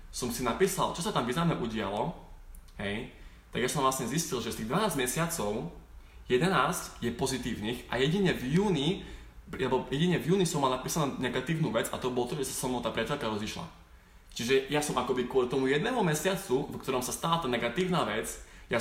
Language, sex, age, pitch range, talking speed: Slovak, male, 20-39, 120-155 Hz, 200 wpm